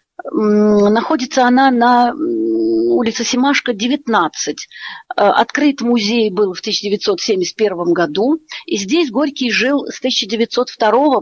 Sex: female